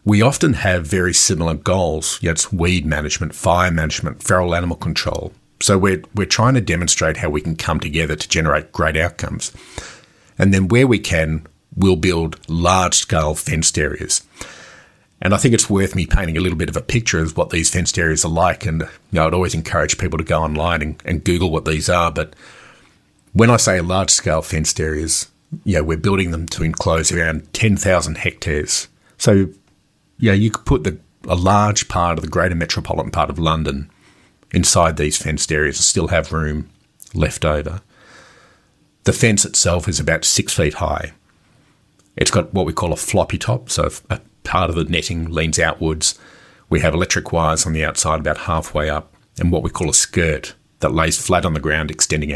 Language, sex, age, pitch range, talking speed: English, male, 50-69, 80-95 Hz, 190 wpm